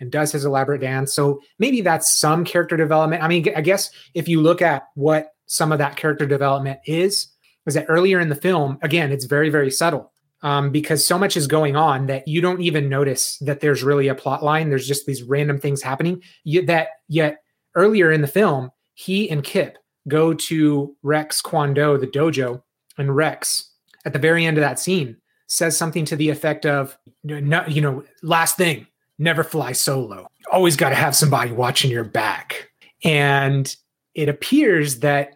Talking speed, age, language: 190 wpm, 30-49, English